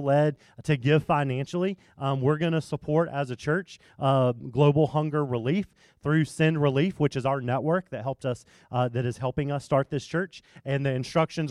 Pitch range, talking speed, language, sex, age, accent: 130-165 Hz, 195 wpm, English, male, 30-49, American